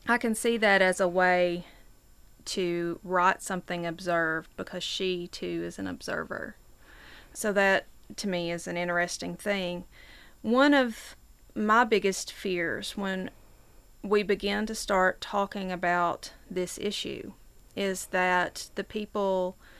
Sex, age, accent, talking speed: female, 30-49, American, 130 wpm